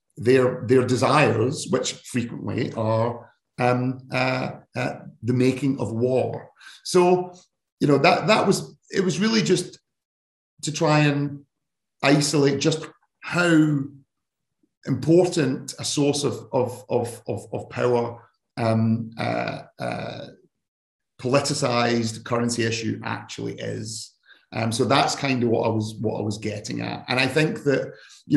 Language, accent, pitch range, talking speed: English, British, 125-155 Hz, 135 wpm